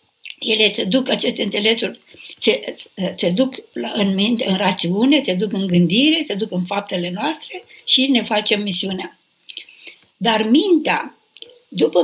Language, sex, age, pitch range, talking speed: Romanian, female, 60-79, 225-300 Hz, 130 wpm